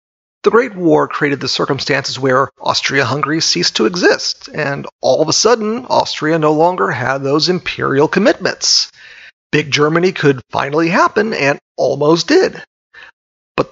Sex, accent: male, American